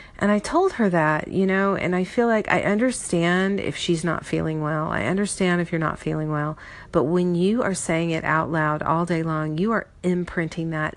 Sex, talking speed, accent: female, 220 wpm, American